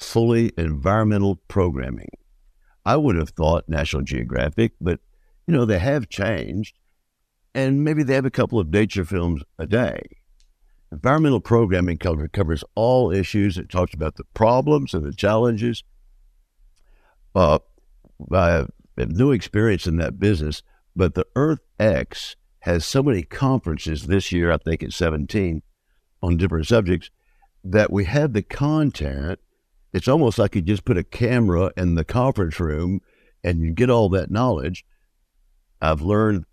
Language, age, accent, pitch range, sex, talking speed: English, 60-79, American, 85-115 Hz, male, 145 wpm